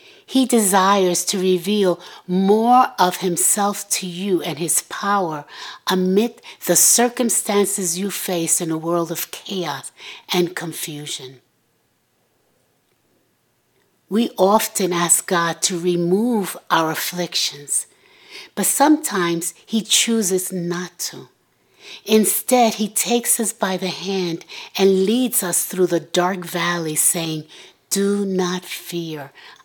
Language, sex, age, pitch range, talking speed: English, female, 60-79, 170-220 Hz, 115 wpm